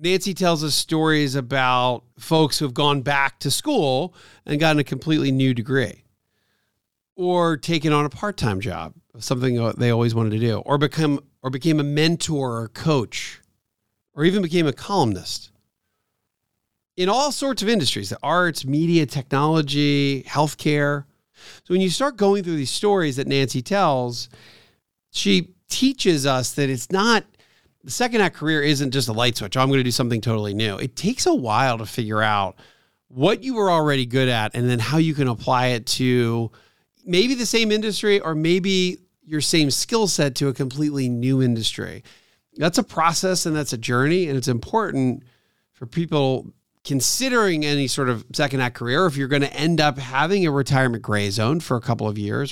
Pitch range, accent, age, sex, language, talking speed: 120-165 Hz, American, 50-69, male, English, 180 wpm